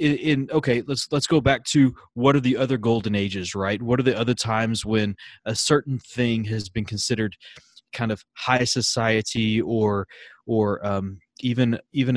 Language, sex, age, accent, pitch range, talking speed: English, male, 20-39, American, 105-135 Hz, 175 wpm